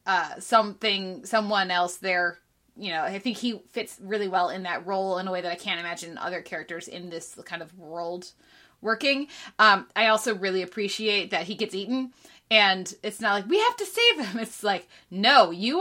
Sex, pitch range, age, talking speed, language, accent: female, 190-245 Hz, 20-39, 200 wpm, English, American